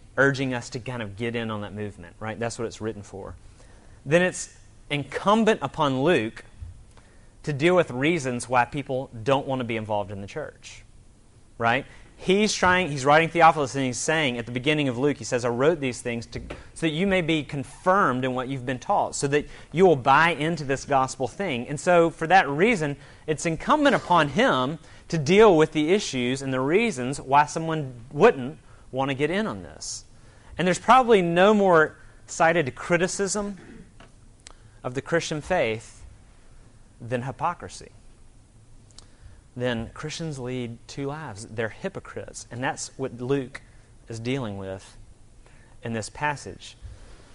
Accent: American